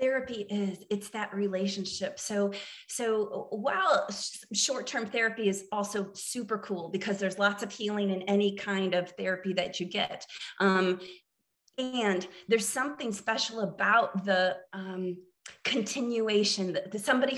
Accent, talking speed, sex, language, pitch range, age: American, 135 wpm, female, English, 195-245 Hz, 30-49